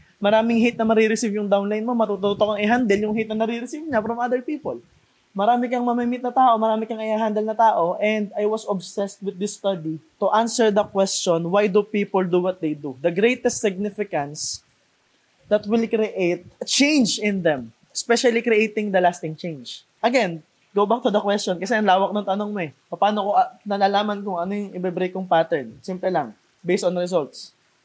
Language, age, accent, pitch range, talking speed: Filipino, 20-39, native, 185-235 Hz, 190 wpm